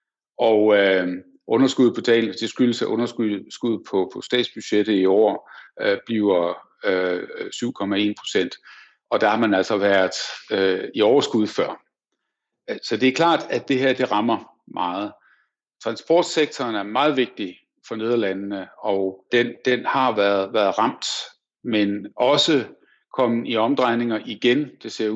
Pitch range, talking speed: 105-135 Hz, 130 wpm